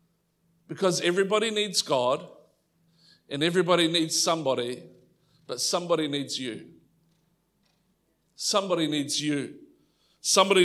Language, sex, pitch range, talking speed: English, male, 165-180 Hz, 90 wpm